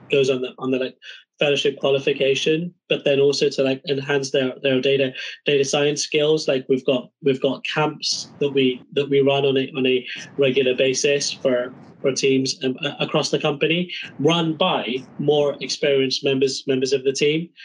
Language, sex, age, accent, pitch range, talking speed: English, male, 20-39, British, 135-150 Hz, 175 wpm